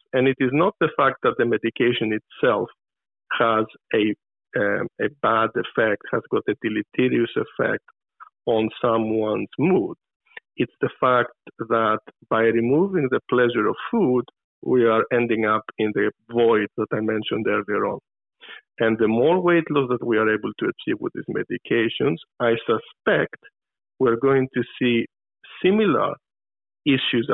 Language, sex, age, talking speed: English, male, 50-69, 150 wpm